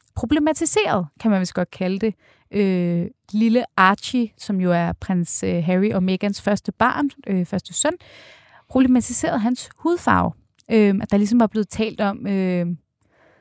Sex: female